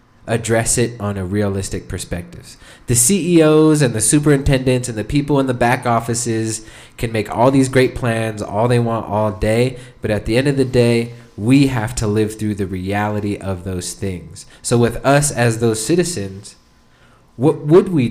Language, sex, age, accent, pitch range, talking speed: English, male, 20-39, American, 105-125 Hz, 180 wpm